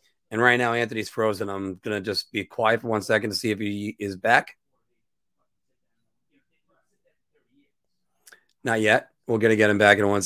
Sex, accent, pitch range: male, American, 115-155 Hz